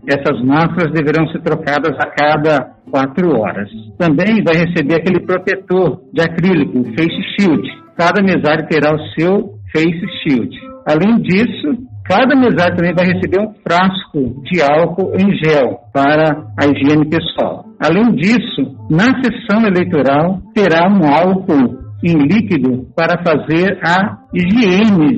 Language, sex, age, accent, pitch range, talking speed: Portuguese, male, 60-79, Brazilian, 150-195 Hz, 135 wpm